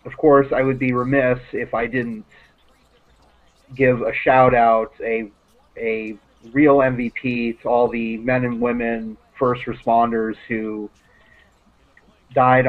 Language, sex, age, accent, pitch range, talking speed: English, male, 30-49, American, 110-135 Hz, 125 wpm